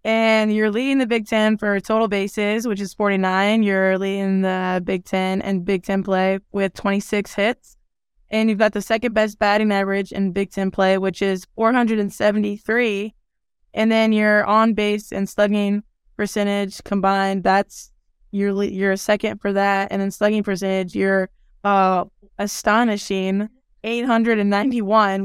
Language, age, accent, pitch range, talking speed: English, 20-39, American, 195-215 Hz, 145 wpm